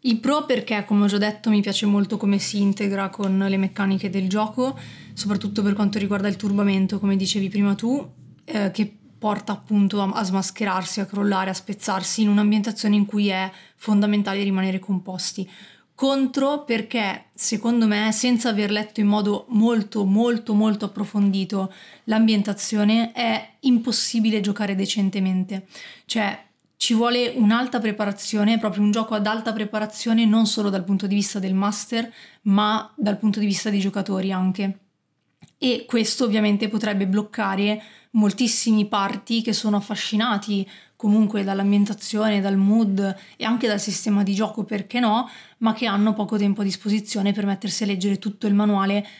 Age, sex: 30-49, female